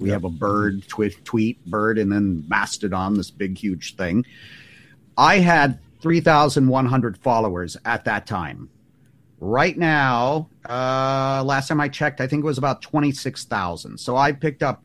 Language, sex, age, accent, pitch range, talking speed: English, male, 50-69, American, 105-140 Hz, 170 wpm